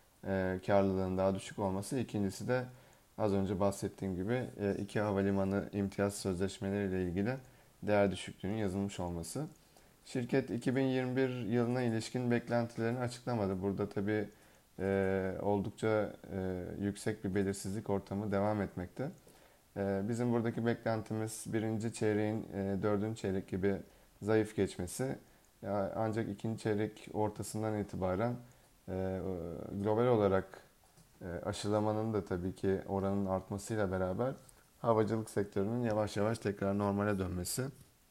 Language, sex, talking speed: Turkish, male, 100 wpm